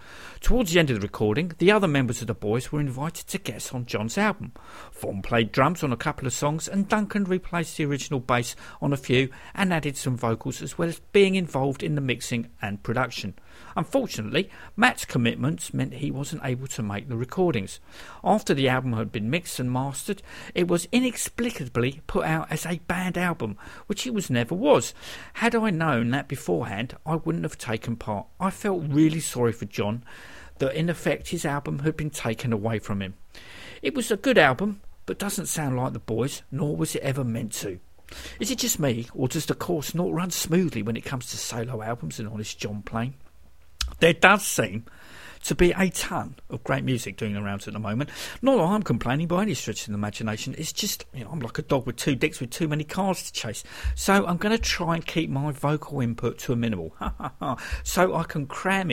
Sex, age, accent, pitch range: male, 50-69, British, 115-170 Hz